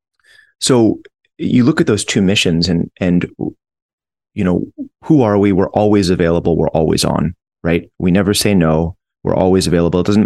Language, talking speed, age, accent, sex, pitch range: English, 175 wpm, 30-49, American, male, 80-95 Hz